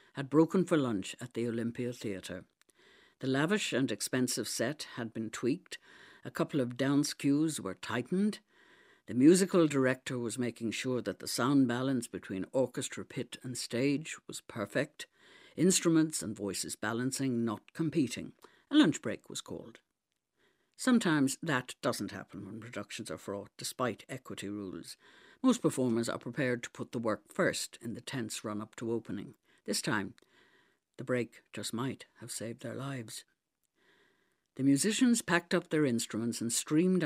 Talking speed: 155 wpm